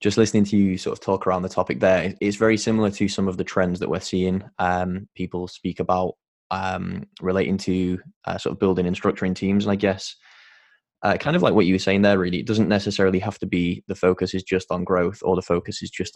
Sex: male